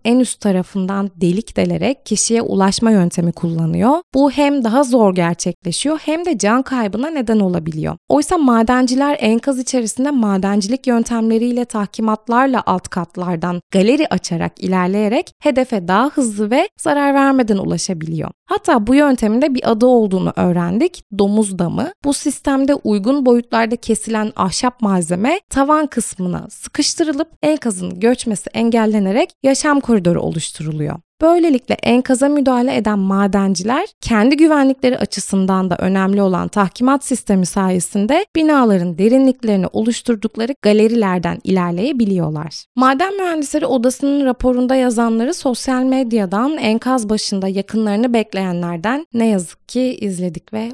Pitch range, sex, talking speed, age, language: 195-265 Hz, female, 120 wpm, 20-39, Turkish